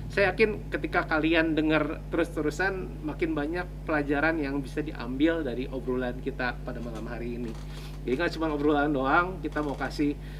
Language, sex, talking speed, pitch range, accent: Indonesian, male, 155 wpm, 130-155 Hz, native